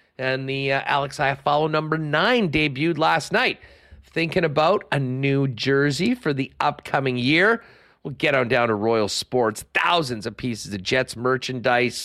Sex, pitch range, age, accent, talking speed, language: male, 120-150 Hz, 40-59, American, 165 wpm, English